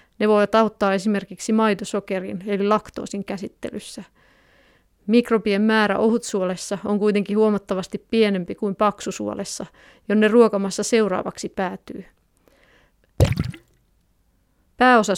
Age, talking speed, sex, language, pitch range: 30-49, 85 wpm, female, Finnish, 195-220 Hz